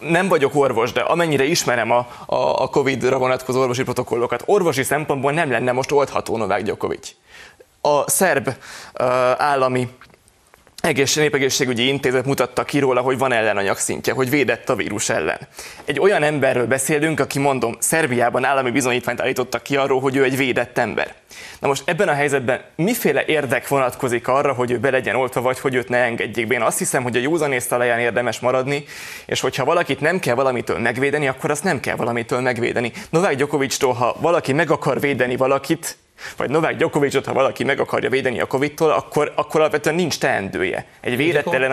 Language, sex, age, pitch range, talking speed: Hungarian, male, 20-39, 125-145 Hz, 170 wpm